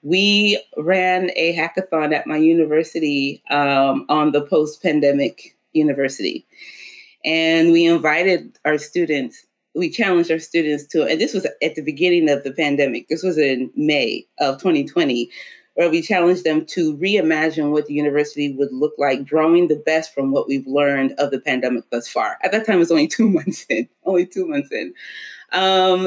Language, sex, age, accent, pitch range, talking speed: English, female, 30-49, American, 155-205 Hz, 175 wpm